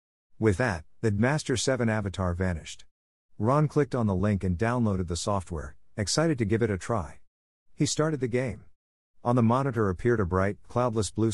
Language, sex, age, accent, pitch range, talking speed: English, male, 50-69, American, 85-120 Hz, 180 wpm